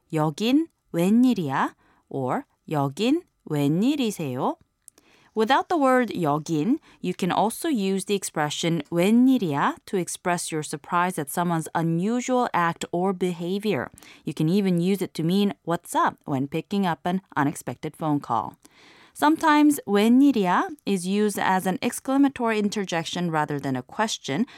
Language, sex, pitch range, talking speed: English, female, 155-240 Hz, 130 wpm